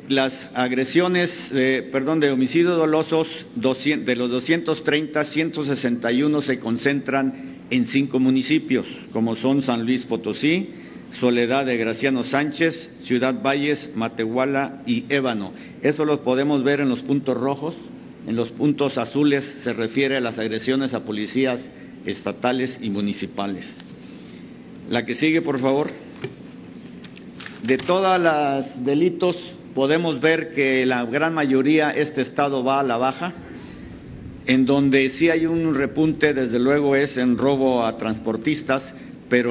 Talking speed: 135 wpm